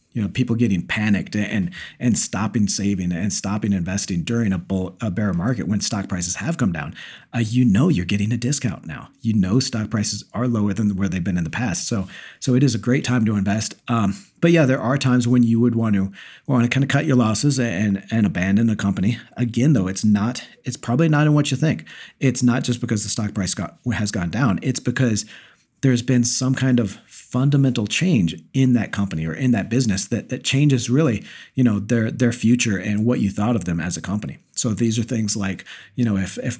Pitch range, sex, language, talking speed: 100-125 Hz, male, English, 235 wpm